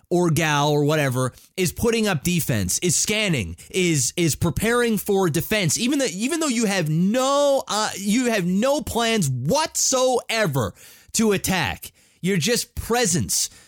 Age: 30-49